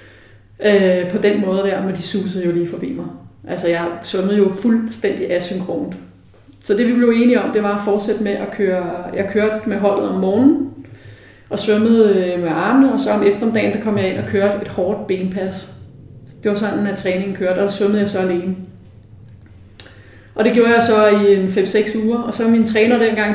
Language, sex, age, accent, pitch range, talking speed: Danish, female, 30-49, native, 180-215 Hz, 205 wpm